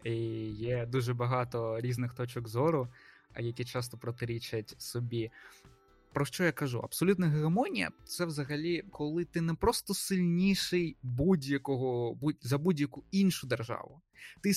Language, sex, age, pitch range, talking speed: Ukrainian, male, 20-39, 125-165 Hz, 130 wpm